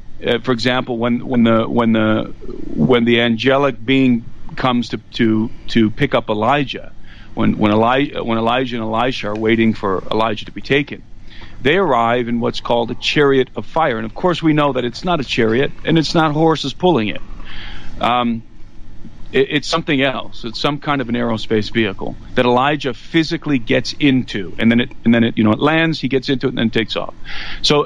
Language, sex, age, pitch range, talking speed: English, male, 40-59, 110-140 Hz, 200 wpm